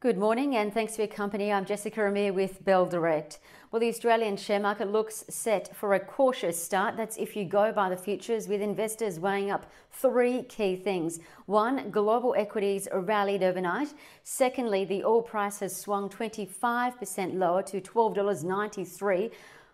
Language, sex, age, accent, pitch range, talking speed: English, female, 40-59, Australian, 190-220 Hz, 160 wpm